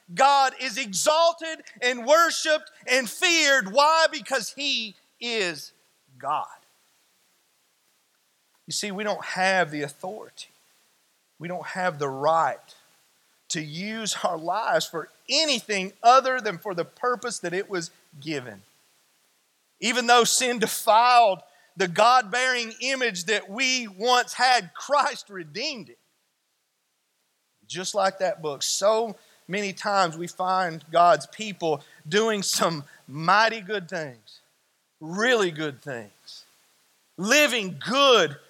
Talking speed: 115 wpm